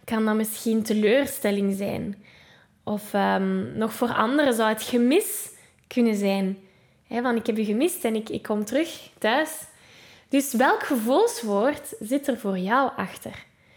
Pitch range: 215-280 Hz